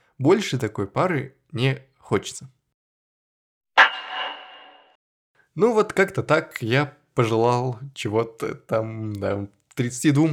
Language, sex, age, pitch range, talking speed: Russian, male, 20-39, 110-140 Hz, 85 wpm